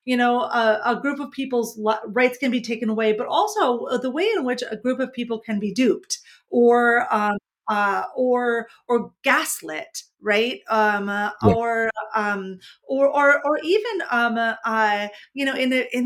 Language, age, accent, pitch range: English, 40-59, American, 210-270 Hz